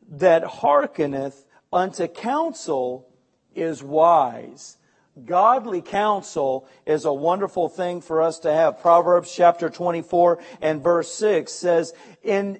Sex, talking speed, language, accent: male, 115 wpm, English, American